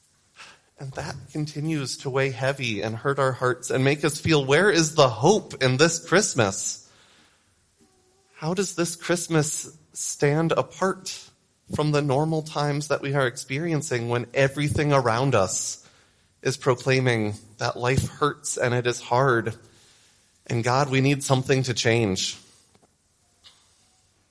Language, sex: English, male